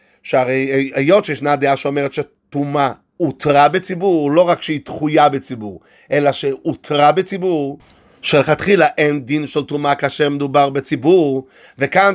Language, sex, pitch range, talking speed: Hebrew, male, 145-180 Hz, 125 wpm